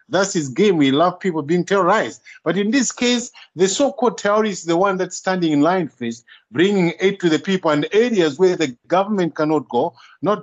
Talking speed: 205 wpm